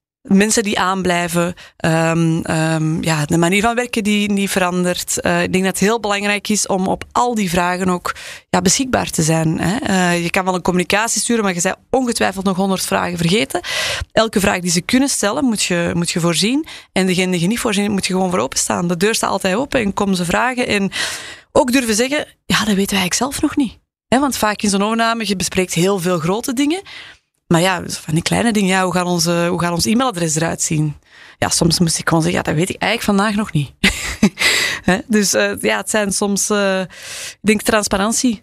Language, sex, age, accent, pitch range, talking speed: Dutch, female, 20-39, Dutch, 180-225 Hz, 220 wpm